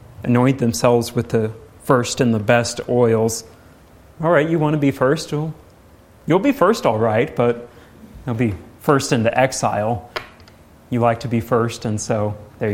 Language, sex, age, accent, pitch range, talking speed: English, male, 30-49, American, 100-120 Hz, 165 wpm